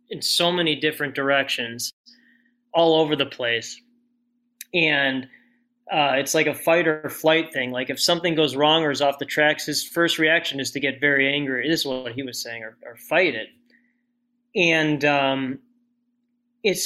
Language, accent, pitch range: English, American, 135-210 Hz